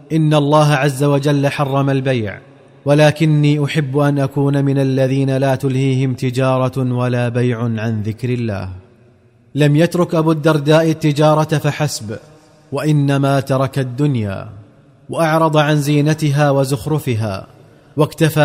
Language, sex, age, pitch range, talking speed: Arabic, male, 30-49, 135-150 Hz, 110 wpm